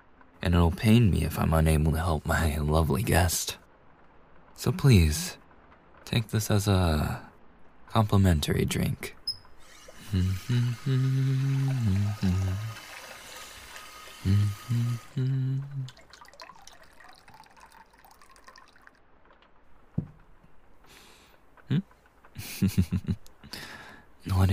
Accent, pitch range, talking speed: American, 80-115 Hz, 50 wpm